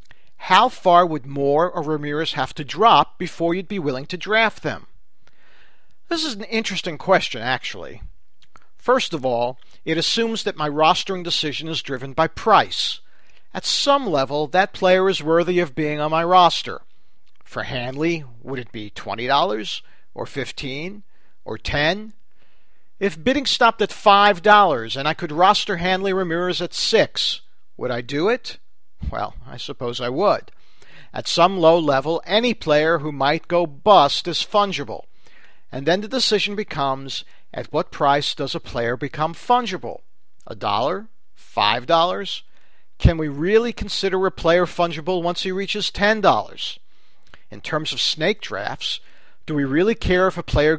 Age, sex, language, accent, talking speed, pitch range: 50-69, male, English, American, 155 wpm, 140-190 Hz